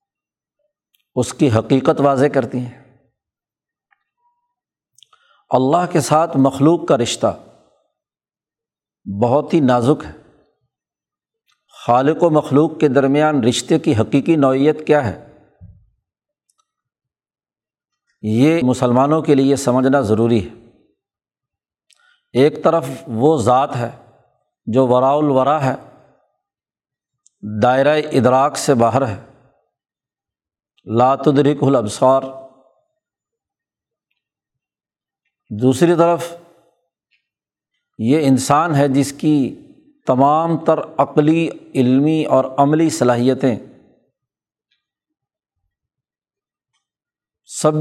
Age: 60-79